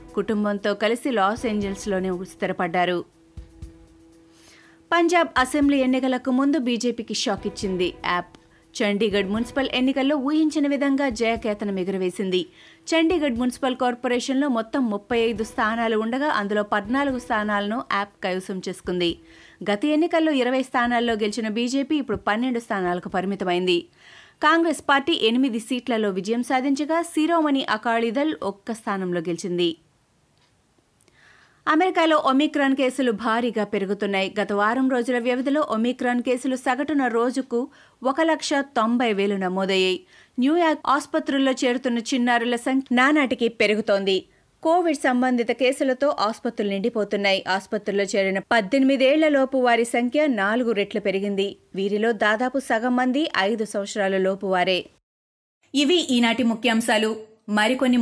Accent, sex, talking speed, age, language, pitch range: native, female, 100 wpm, 30-49, Telugu, 205-265 Hz